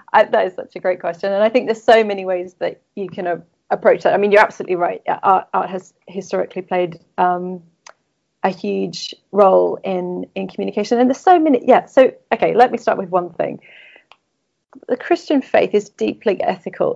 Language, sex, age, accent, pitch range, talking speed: English, female, 30-49, British, 180-235 Hz, 200 wpm